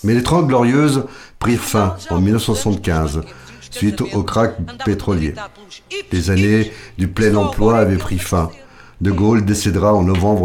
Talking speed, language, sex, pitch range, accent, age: 145 wpm, French, male, 90-110 Hz, French, 50-69